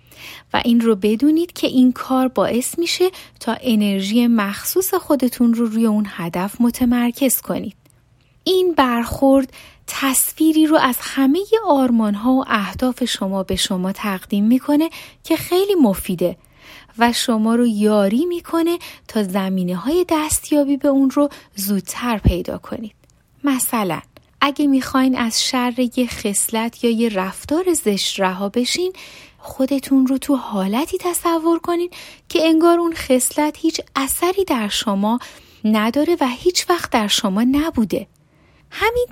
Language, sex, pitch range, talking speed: Persian, female, 220-295 Hz, 130 wpm